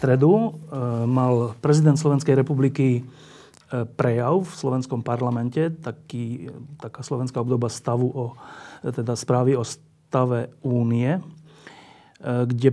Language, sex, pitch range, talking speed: Slovak, male, 125-150 Hz, 95 wpm